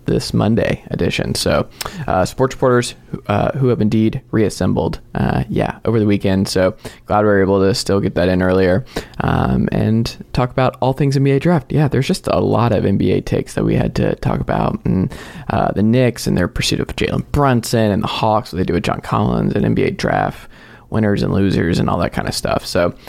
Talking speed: 215 wpm